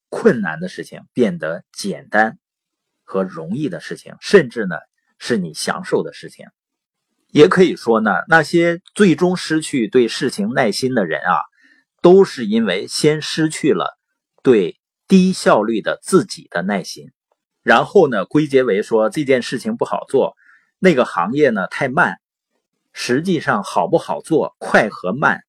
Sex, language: male, Chinese